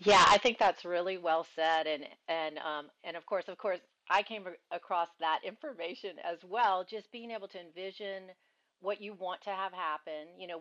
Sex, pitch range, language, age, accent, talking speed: female, 160-205 Hz, English, 40-59, American, 200 wpm